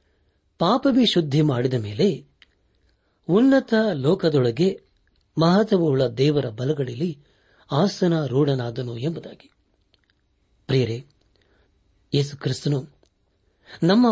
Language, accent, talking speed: Kannada, native, 65 wpm